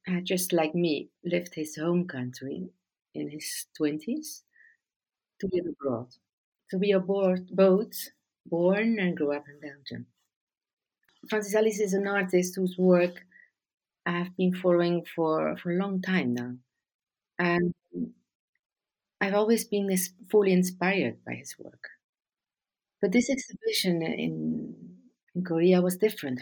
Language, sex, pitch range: Chinese, female, 160-200 Hz